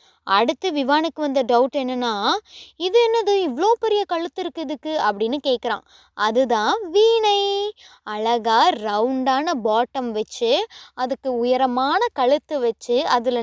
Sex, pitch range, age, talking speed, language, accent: female, 235-335 Hz, 20-39, 110 wpm, Tamil, native